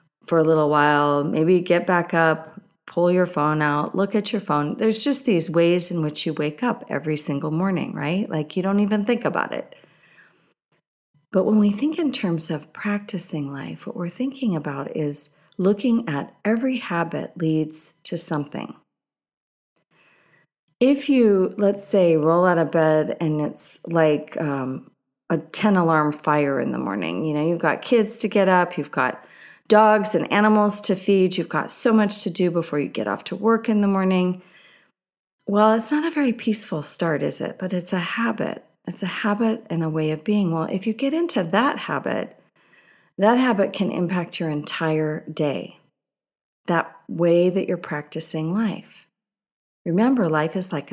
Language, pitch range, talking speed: English, 155-210 Hz, 180 wpm